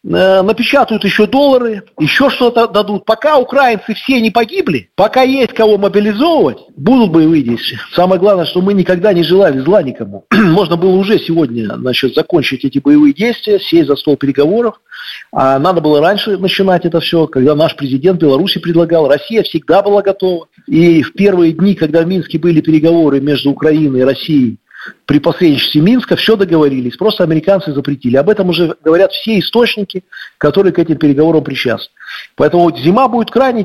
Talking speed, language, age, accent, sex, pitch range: 160 wpm, Russian, 50-69, native, male, 155-220 Hz